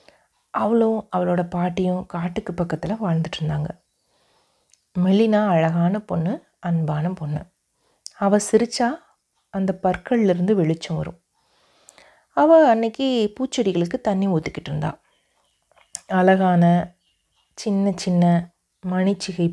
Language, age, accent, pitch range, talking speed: Tamil, 30-49, native, 170-200 Hz, 90 wpm